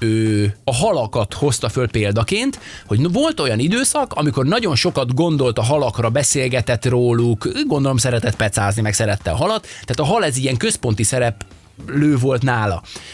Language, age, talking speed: Hungarian, 20-39, 150 wpm